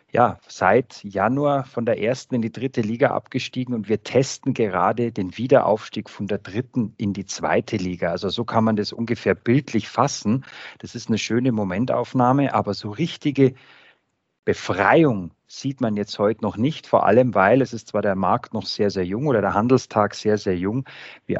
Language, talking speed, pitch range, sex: German, 185 wpm, 105-130 Hz, male